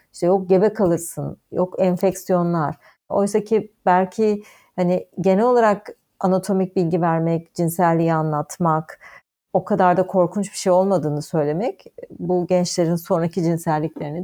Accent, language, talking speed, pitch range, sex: native, Turkish, 120 wpm, 165-200 Hz, female